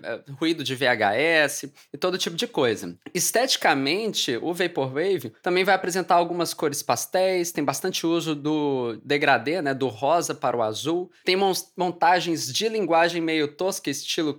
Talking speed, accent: 145 wpm, Brazilian